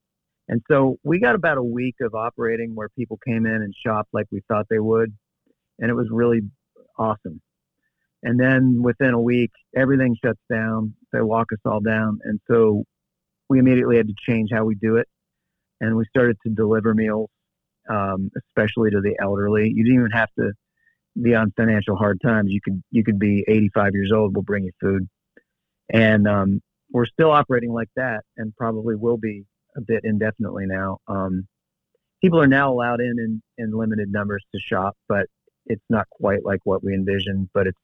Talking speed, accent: 190 wpm, American